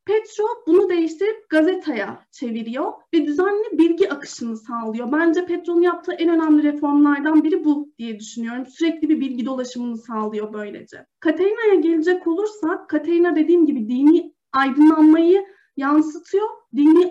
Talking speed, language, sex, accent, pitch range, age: 125 wpm, Turkish, female, native, 270-345 Hz, 30-49